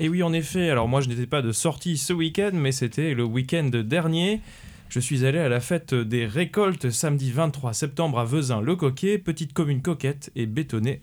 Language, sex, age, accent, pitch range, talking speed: French, male, 20-39, French, 125-170 Hz, 195 wpm